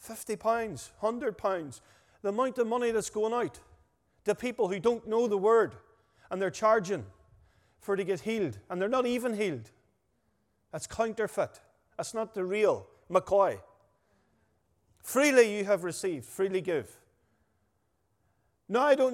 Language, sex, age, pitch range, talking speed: English, male, 40-59, 175-225 Hz, 145 wpm